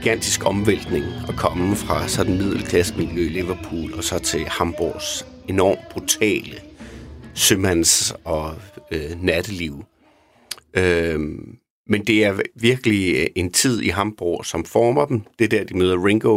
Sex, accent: male, native